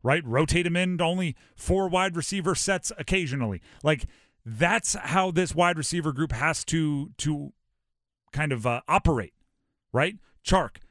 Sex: male